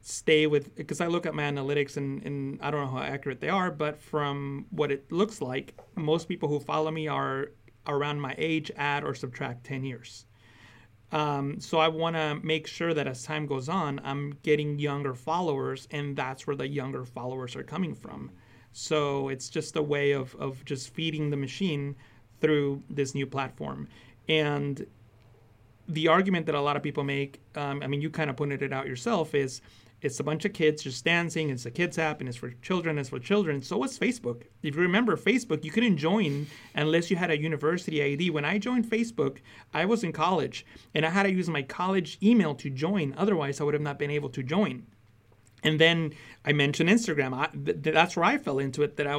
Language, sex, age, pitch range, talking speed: English, male, 30-49, 135-160 Hz, 210 wpm